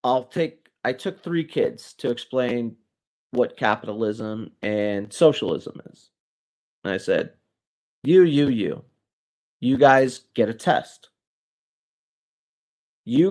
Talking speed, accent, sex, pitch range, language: 115 wpm, American, male, 120-150 Hz, English